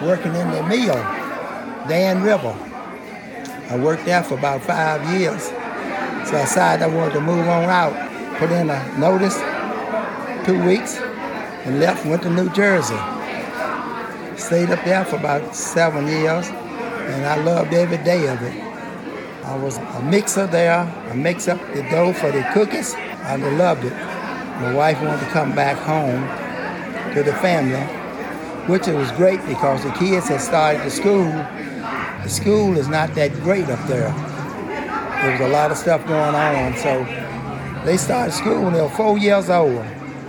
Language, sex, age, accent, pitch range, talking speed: English, male, 60-79, American, 140-180 Hz, 165 wpm